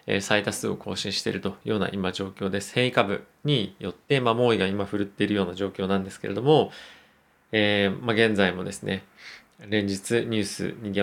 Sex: male